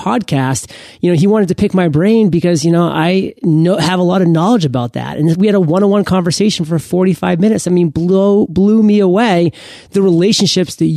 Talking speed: 210 wpm